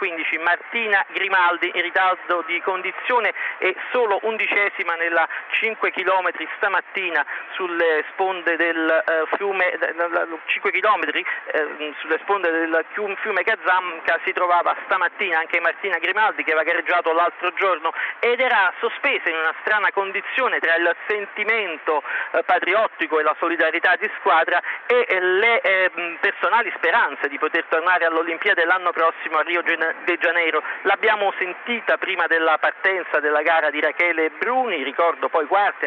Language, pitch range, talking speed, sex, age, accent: Italian, 165-200 Hz, 125 wpm, male, 40-59, native